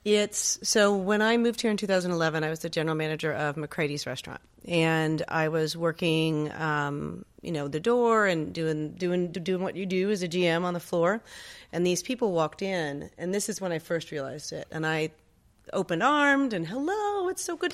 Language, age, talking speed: English, 30-49, 205 wpm